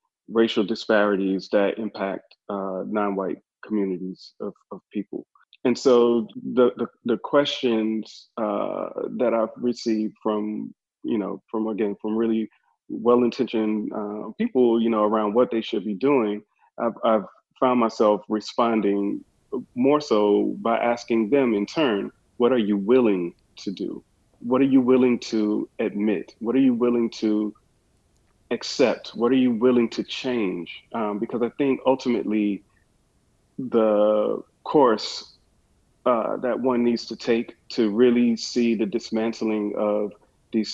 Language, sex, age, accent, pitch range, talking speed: English, male, 40-59, American, 105-120 Hz, 135 wpm